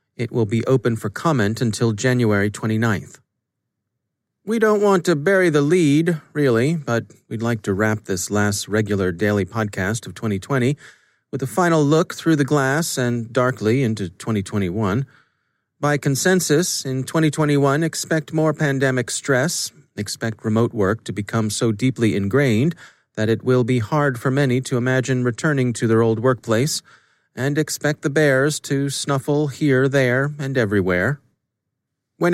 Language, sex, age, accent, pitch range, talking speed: English, male, 40-59, American, 115-145 Hz, 150 wpm